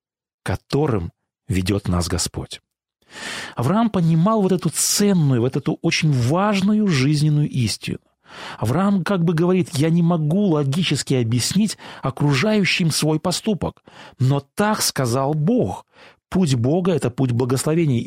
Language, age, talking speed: Russian, 30-49, 120 wpm